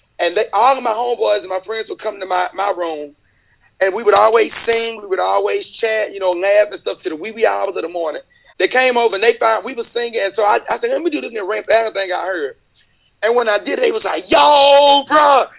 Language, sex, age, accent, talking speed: English, male, 30-49, American, 270 wpm